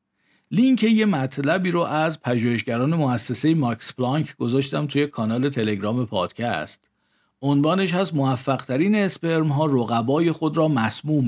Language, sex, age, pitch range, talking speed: Persian, male, 50-69, 120-160 Hz, 115 wpm